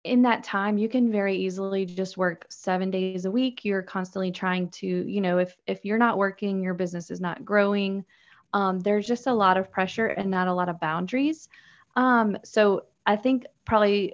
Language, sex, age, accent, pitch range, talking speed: English, female, 20-39, American, 185-215 Hz, 200 wpm